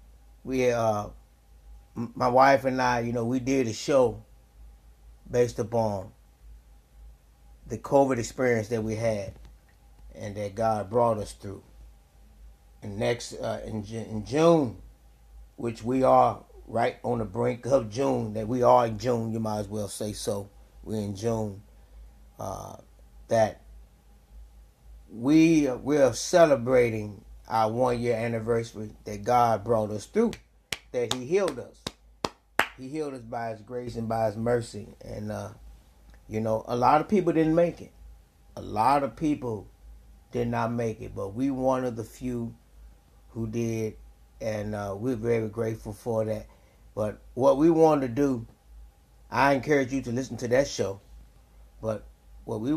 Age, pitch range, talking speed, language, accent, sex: 30-49, 80-125 Hz, 150 wpm, English, American, male